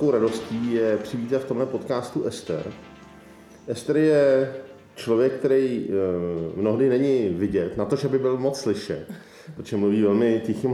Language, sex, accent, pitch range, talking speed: Czech, male, native, 105-125 Hz, 140 wpm